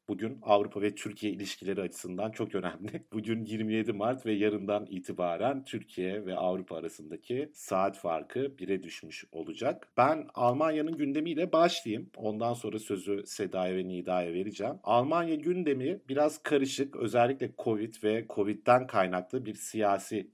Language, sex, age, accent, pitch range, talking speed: Turkish, male, 50-69, native, 100-135 Hz, 135 wpm